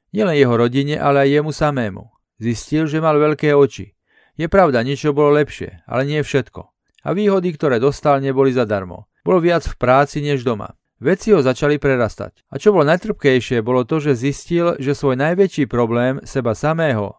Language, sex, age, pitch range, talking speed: Slovak, male, 40-59, 120-150 Hz, 175 wpm